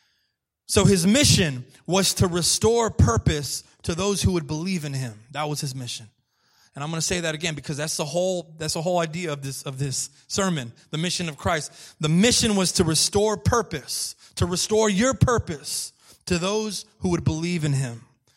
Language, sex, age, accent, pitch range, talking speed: English, male, 30-49, American, 140-185 Hz, 195 wpm